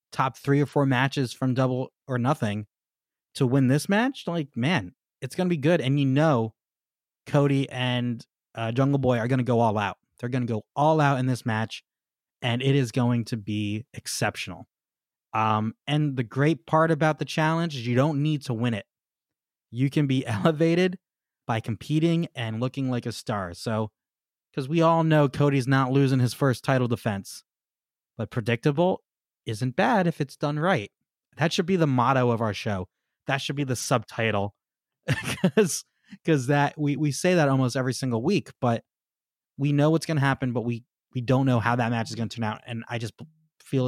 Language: English